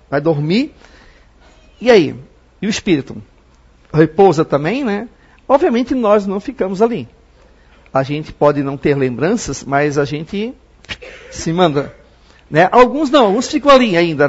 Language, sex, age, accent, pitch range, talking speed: Portuguese, male, 50-69, Brazilian, 140-200 Hz, 140 wpm